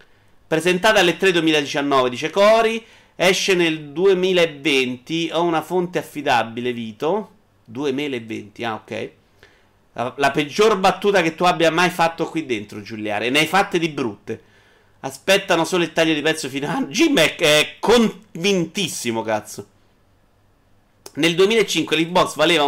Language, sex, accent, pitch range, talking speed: Italian, male, native, 125-175 Hz, 130 wpm